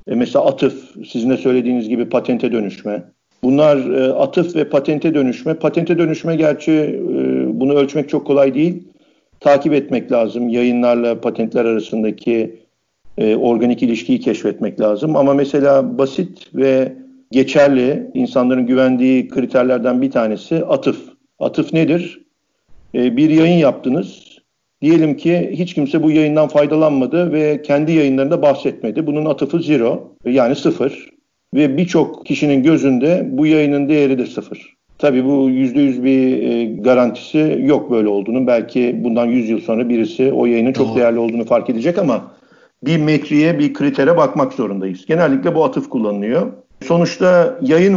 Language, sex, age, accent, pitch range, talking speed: Turkish, male, 50-69, native, 125-155 Hz, 135 wpm